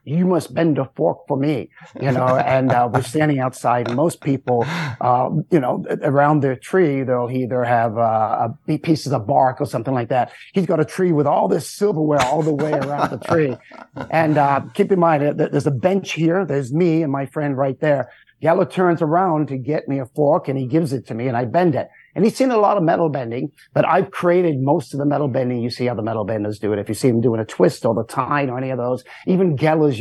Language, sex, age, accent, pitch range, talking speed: English, male, 50-69, American, 135-175 Hz, 245 wpm